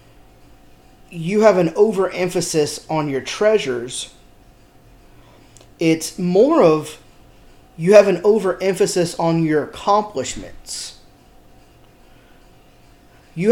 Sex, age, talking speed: male, 30-49, 80 wpm